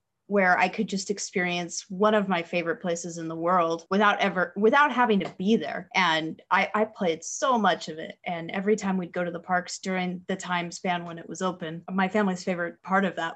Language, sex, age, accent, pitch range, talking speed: English, female, 20-39, American, 170-195 Hz, 225 wpm